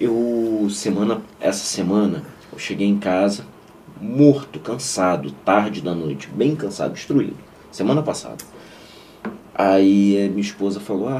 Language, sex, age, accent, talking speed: Portuguese, male, 40-59, Brazilian, 125 wpm